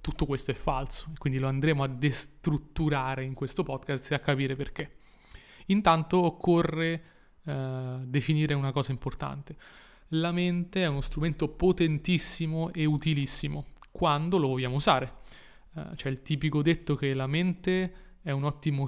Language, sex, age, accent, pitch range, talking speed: Italian, male, 30-49, native, 140-165 Hz, 145 wpm